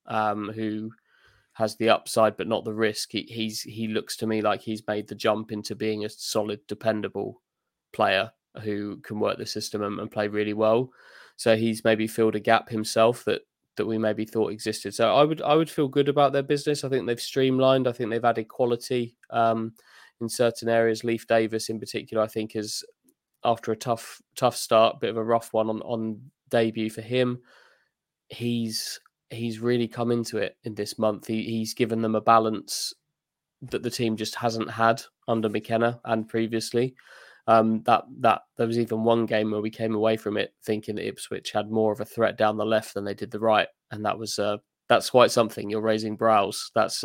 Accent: British